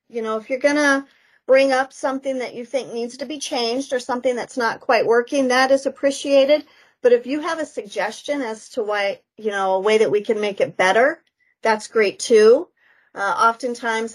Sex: female